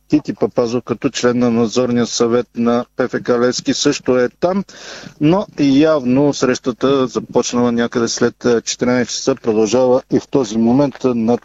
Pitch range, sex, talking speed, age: 120-140 Hz, male, 145 wpm, 50-69